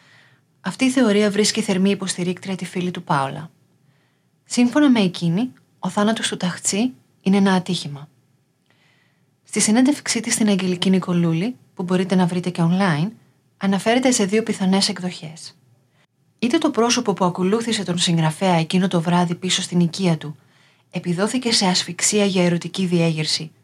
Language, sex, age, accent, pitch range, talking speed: Greek, female, 30-49, native, 165-205 Hz, 145 wpm